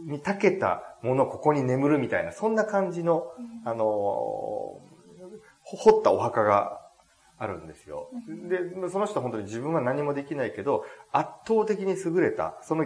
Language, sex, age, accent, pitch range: Japanese, male, 40-59, native, 145-230 Hz